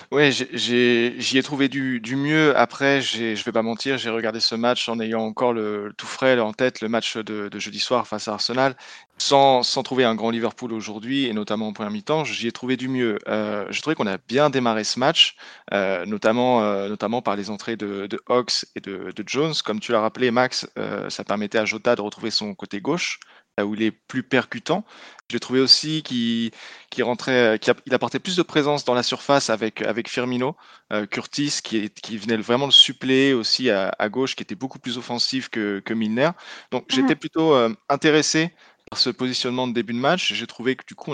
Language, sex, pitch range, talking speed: French, male, 110-130 Hz, 225 wpm